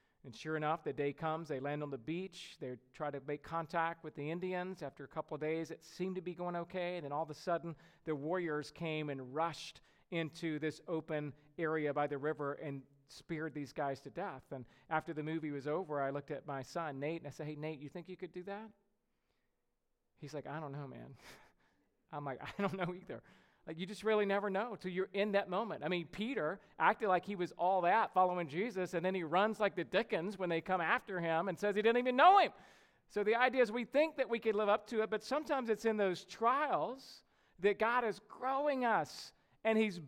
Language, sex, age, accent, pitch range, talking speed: English, male, 40-59, American, 155-220 Hz, 230 wpm